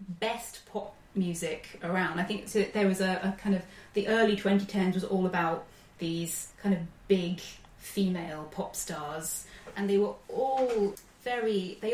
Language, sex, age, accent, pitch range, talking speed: English, female, 20-39, British, 185-225 Hz, 155 wpm